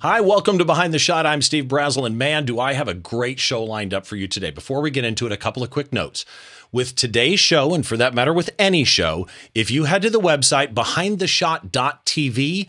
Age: 40-59